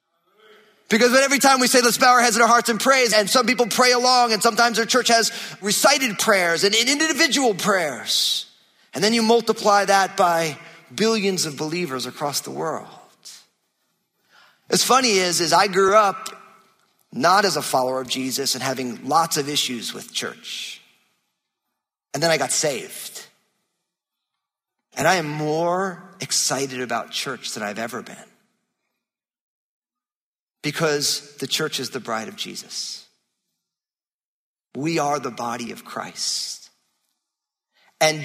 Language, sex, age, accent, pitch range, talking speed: English, male, 40-59, American, 135-220 Hz, 145 wpm